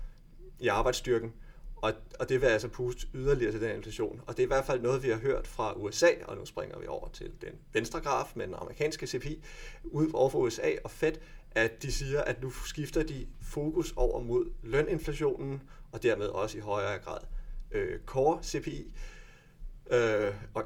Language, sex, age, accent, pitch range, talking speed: Danish, male, 30-49, native, 115-160 Hz, 180 wpm